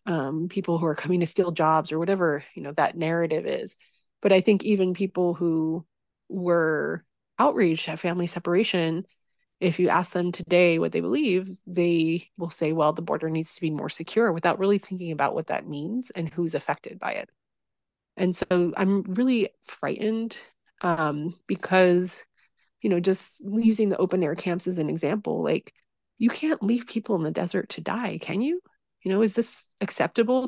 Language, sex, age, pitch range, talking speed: English, female, 30-49, 170-210 Hz, 180 wpm